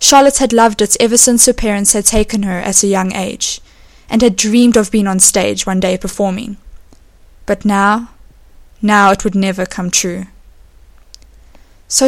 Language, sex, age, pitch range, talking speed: English, female, 10-29, 185-230 Hz, 170 wpm